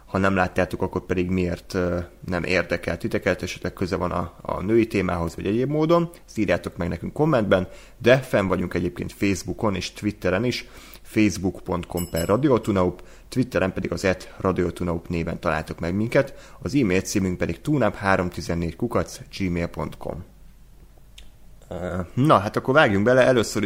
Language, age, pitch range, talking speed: Hungarian, 30-49, 90-105 Hz, 135 wpm